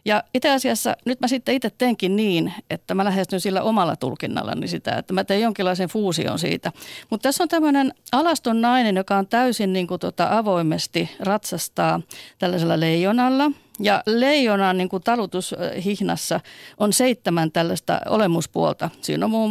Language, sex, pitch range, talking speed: Finnish, female, 185-235 Hz, 150 wpm